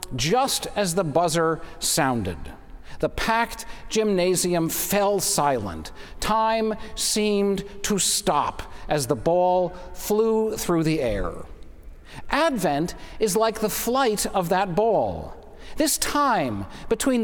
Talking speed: 110 wpm